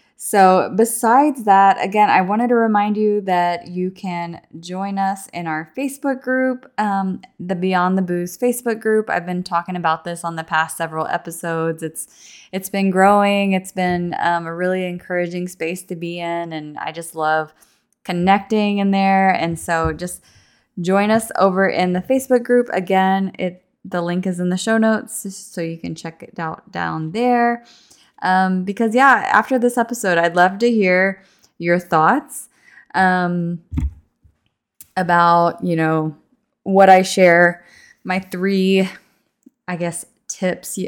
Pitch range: 170-210 Hz